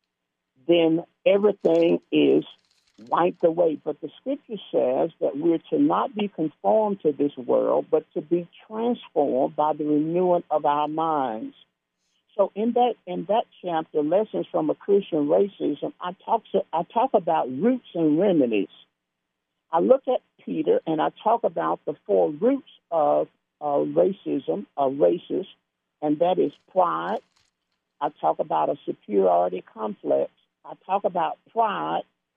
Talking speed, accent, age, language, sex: 145 wpm, American, 50-69, English, male